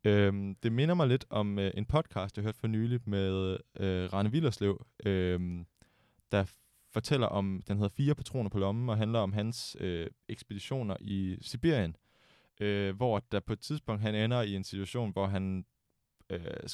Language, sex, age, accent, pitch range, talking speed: Danish, male, 20-39, native, 95-120 Hz, 170 wpm